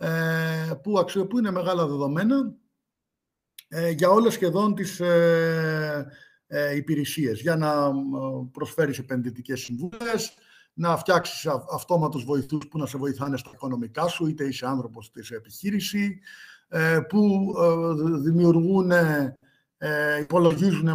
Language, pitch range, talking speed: Greek, 135-175 Hz, 100 wpm